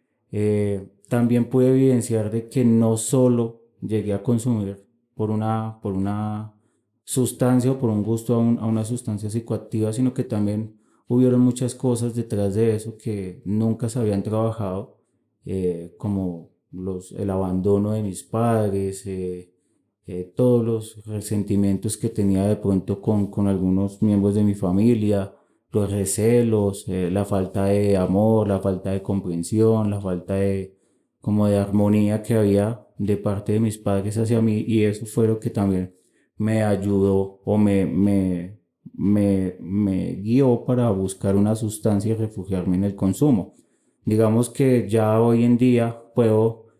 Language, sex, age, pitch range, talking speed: Spanish, male, 30-49, 100-115 Hz, 155 wpm